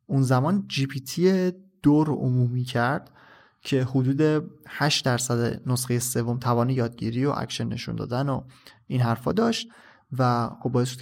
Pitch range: 125-155 Hz